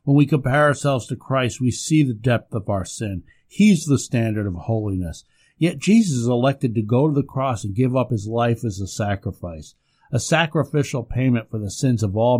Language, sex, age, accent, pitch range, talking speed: English, male, 50-69, American, 115-145 Hz, 210 wpm